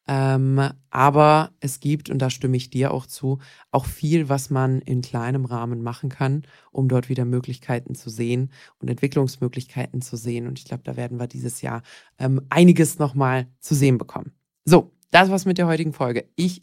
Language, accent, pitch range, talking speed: German, German, 125-165 Hz, 190 wpm